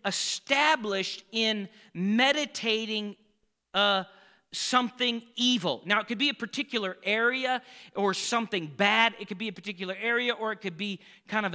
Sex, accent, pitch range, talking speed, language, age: male, American, 195-260 Hz, 145 wpm, English, 40-59